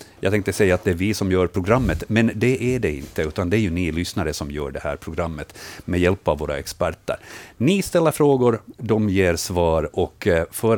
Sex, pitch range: male, 80-120 Hz